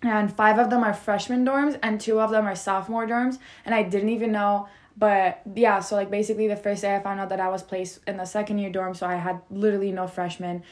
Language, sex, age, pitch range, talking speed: English, female, 20-39, 190-215 Hz, 250 wpm